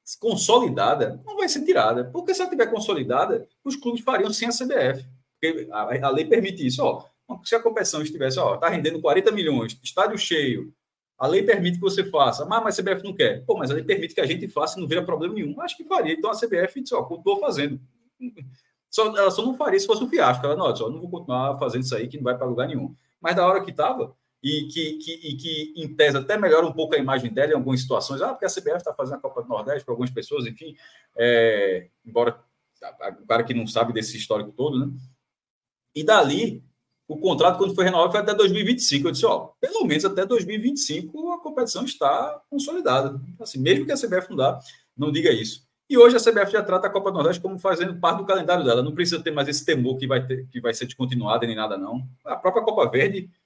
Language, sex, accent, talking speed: Portuguese, male, Brazilian, 230 wpm